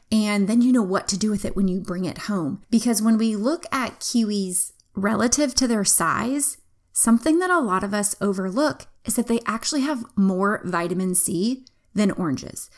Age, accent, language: 20-39, American, English